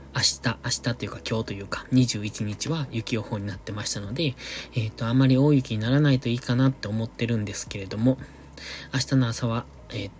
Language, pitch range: Japanese, 110-145 Hz